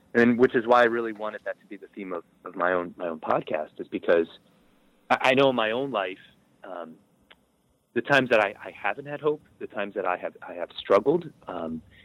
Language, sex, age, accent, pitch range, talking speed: English, male, 30-49, American, 95-125 Hz, 230 wpm